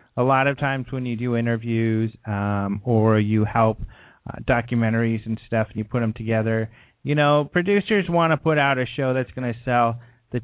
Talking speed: 200 wpm